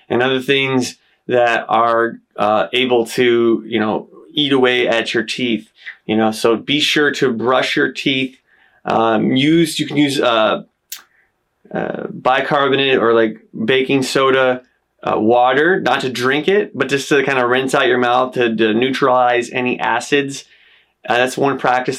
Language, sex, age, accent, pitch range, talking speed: English, male, 20-39, American, 115-135 Hz, 160 wpm